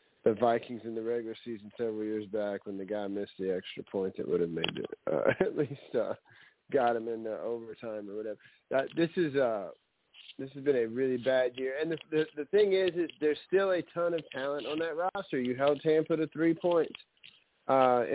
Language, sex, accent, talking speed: English, male, American, 220 wpm